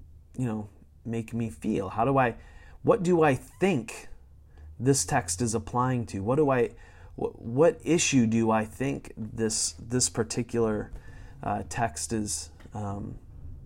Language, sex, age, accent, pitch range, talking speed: English, male, 30-49, American, 90-125 Hz, 145 wpm